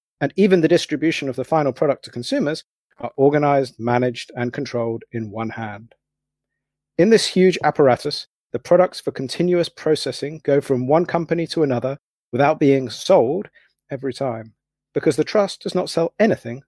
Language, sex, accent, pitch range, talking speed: English, male, British, 125-165 Hz, 160 wpm